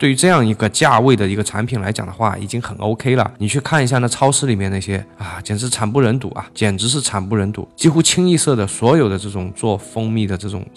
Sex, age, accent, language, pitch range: male, 20-39, native, Chinese, 100-130 Hz